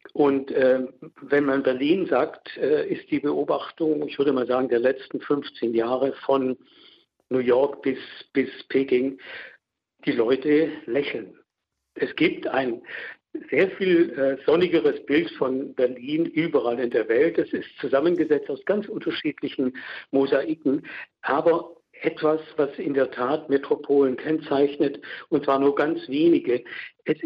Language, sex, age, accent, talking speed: German, male, 60-79, German, 135 wpm